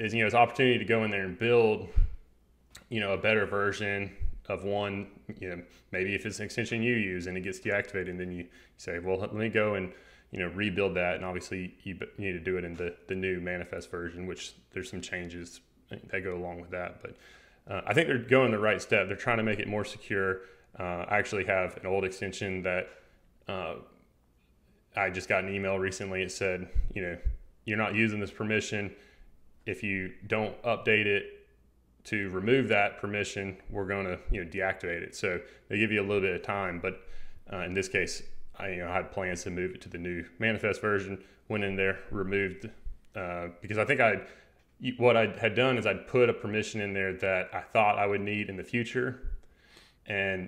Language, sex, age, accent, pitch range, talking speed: English, male, 20-39, American, 90-105 Hz, 215 wpm